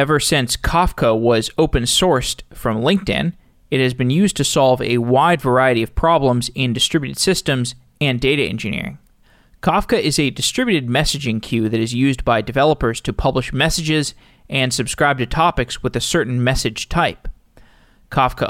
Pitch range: 125-160 Hz